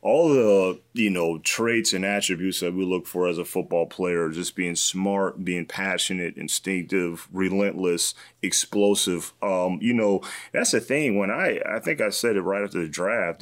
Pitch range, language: 90-100 Hz, English